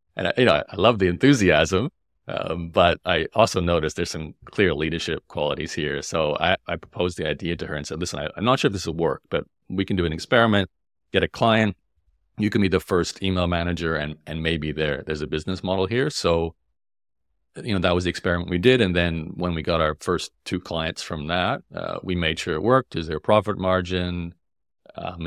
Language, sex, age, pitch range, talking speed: English, male, 40-59, 80-95 Hz, 225 wpm